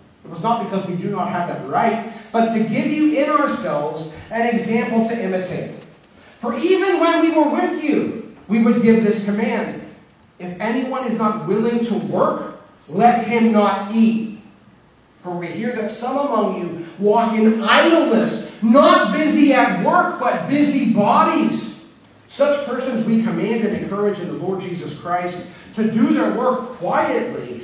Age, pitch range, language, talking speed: 40-59, 205-260 Hz, English, 165 wpm